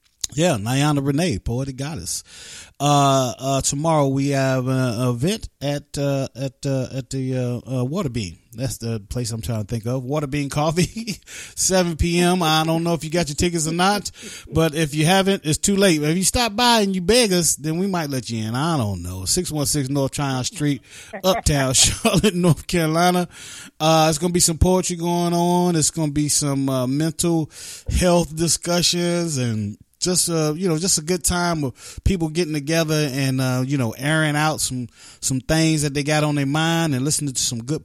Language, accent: English, American